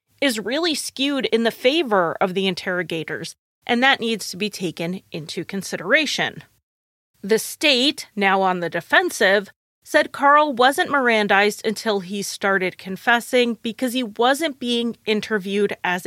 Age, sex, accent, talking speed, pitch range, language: 30-49, female, American, 140 wpm, 195-250 Hz, English